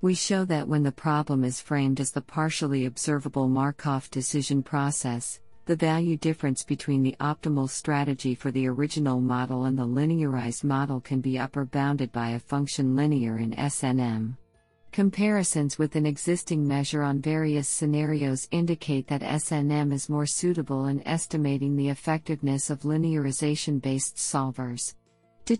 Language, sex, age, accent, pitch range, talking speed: English, female, 50-69, American, 130-155 Hz, 145 wpm